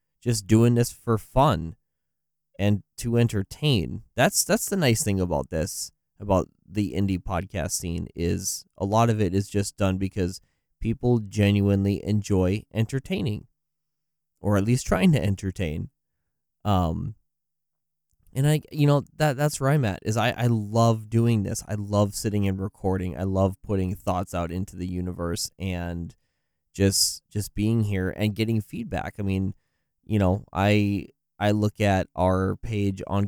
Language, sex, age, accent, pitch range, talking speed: English, male, 20-39, American, 95-115 Hz, 155 wpm